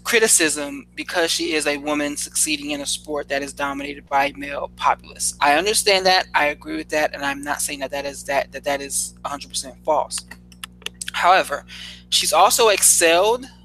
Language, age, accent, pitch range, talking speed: English, 20-39, American, 140-175 Hz, 175 wpm